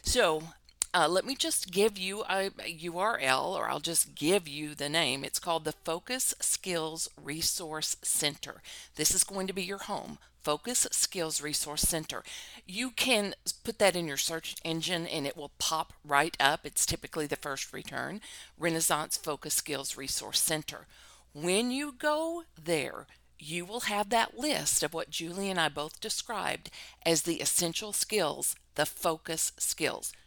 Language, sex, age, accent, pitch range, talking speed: English, female, 50-69, American, 150-195 Hz, 165 wpm